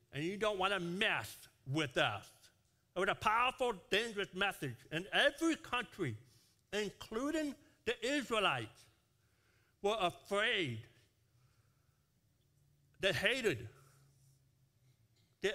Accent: American